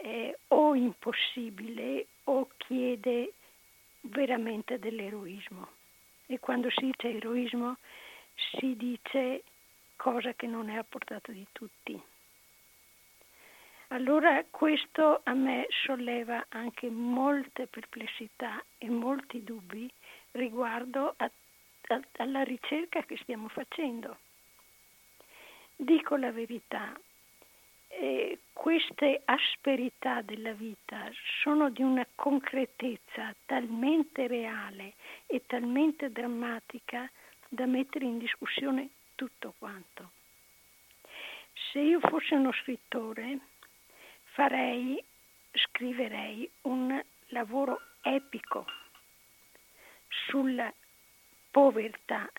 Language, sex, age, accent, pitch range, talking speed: Italian, female, 50-69, native, 235-275 Hz, 85 wpm